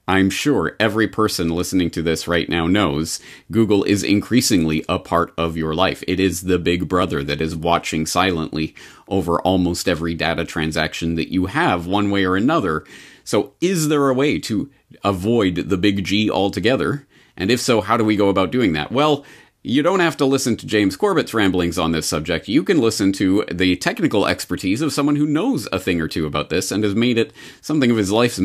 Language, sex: English, male